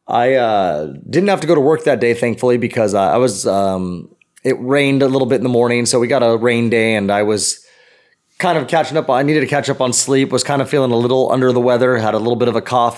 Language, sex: English, male